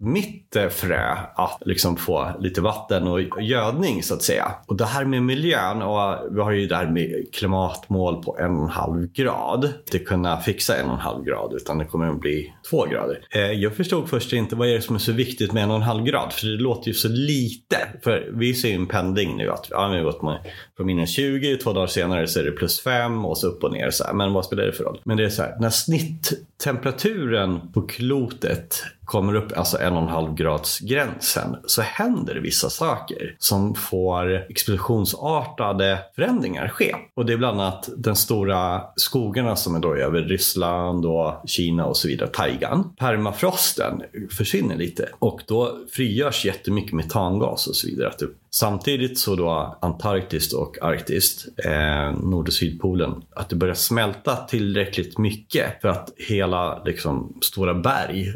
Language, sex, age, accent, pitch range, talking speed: Swedish, male, 30-49, native, 90-120 Hz, 185 wpm